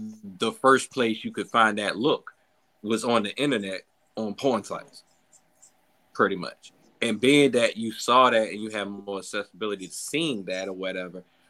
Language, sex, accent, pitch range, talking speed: English, male, American, 100-135 Hz, 170 wpm